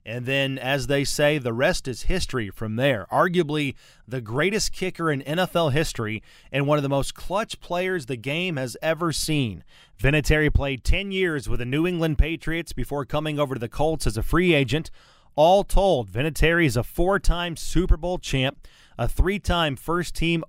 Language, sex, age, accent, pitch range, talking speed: English, male, 30-49, American, 130-170 Hz, 180 wpm